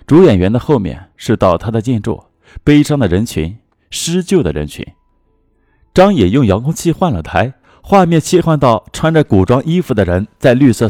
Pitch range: 95-145 Hz